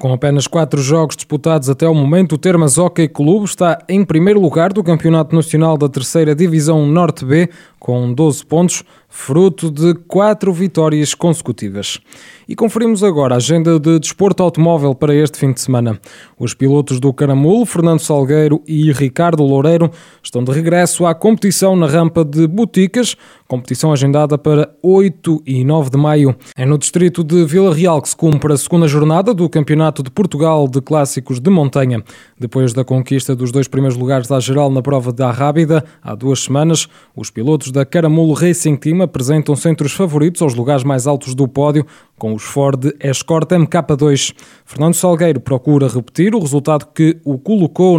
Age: 20-39